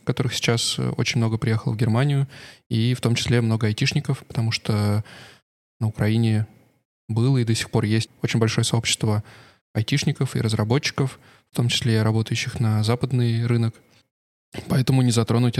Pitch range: 115-130 Hz